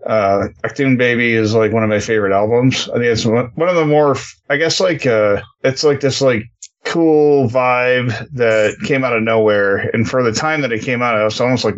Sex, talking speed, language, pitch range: male, 230 wpm, English, 105-120 Hz